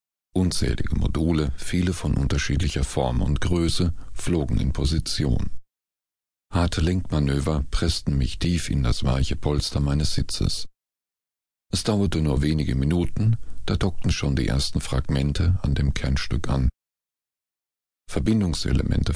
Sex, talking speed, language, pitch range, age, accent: male, 120 wpm, German, 70-90 Hz, 40-59, German